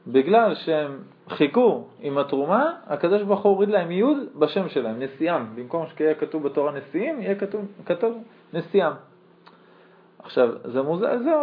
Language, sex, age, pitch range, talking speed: Hebrew, male, 40-59, 150-210 Hz, 130 wpm